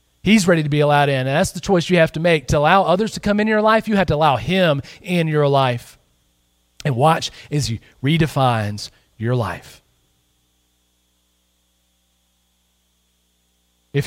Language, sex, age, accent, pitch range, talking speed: English, male, 40-59, American, 110-160 Hz, 160 wpm